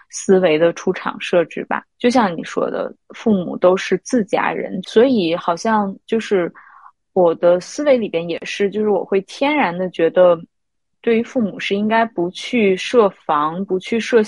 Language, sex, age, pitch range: Chinese, female, 20-39, 175-225 Hz